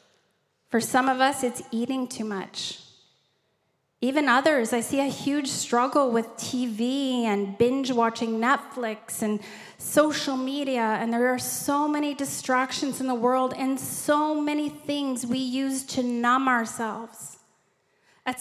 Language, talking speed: English, 135 wpm